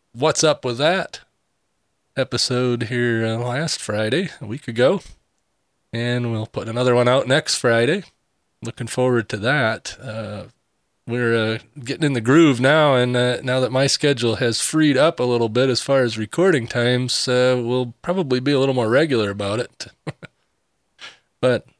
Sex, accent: male, American